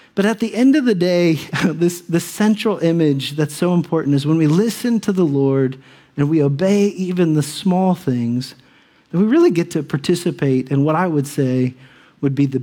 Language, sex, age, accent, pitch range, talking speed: English, male, 40-59, American, 145-190 Hz, 205 wpm